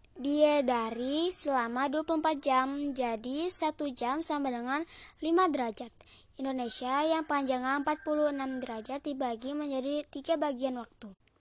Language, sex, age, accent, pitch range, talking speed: Indonesian, female, 10-29, native, 260-310 Hz, 110 wpm